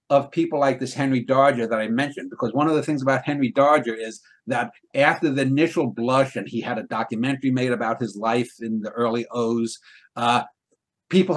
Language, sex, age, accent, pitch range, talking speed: English, male, 60-79, American, 120-145 Hz, 200 wpm